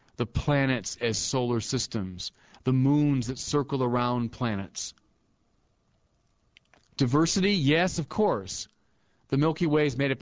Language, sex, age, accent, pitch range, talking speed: English, male, 40-59, American, 120-155 Hz, 125 wpm